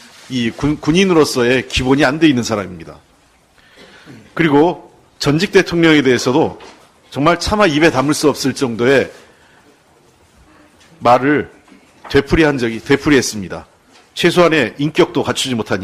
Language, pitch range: English, 125-155 Hz